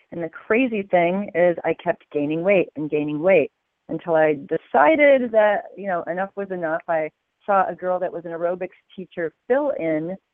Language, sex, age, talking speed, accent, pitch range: English, female, 40-59, 185 wpm, American, 160-200 Hz